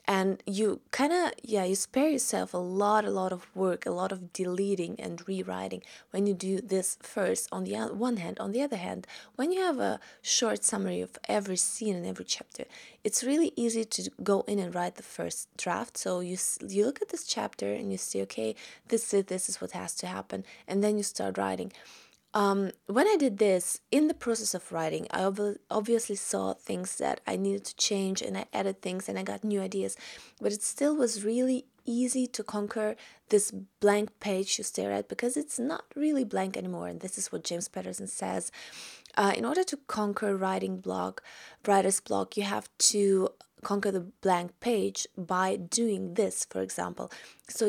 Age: 20-39